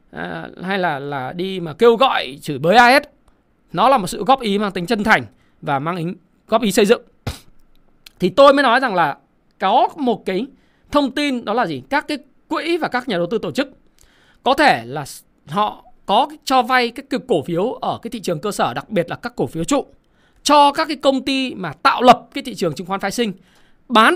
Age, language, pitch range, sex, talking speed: 20-39, Vietnamese, 180-255 Hz, male, 230 wpm